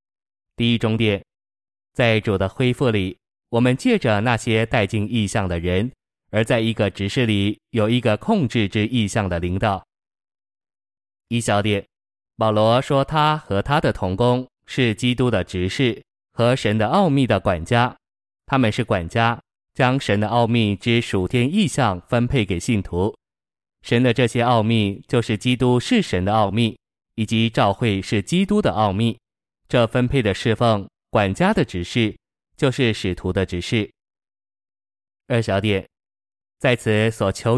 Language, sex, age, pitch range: Chinese, male, 20-39, 100-125 Hz